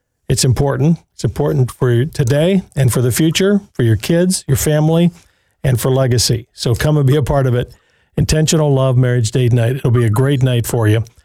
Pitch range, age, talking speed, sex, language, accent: 120-155 Hz, 50-69, 205 wpm, male, English, American